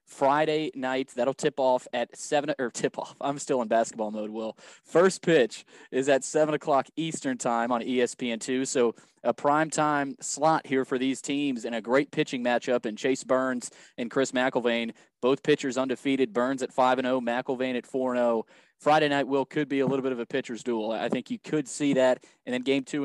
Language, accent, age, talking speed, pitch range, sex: English, American, 20-39, 205 wpm, 120-140 Hz, male